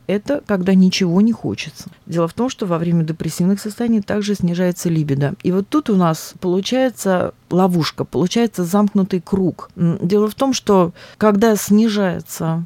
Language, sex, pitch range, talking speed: Russian, female, 165-205 Hz, 150 wpm